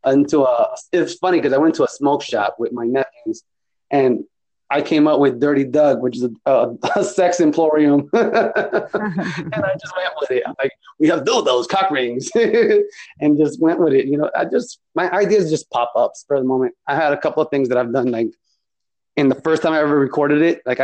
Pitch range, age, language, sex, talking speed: 120-175 Hz, 30-49, English, male, 220 wpm